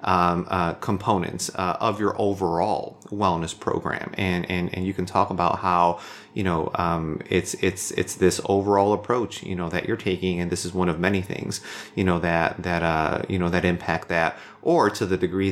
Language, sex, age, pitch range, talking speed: English, male, 30-49, 90-105 Hz, 200 wpm